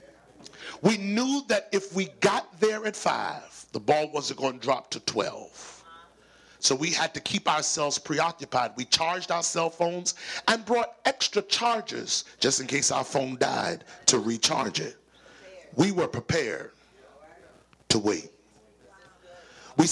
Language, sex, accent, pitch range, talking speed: English, male, American, 130-195 Hz, 145 wpm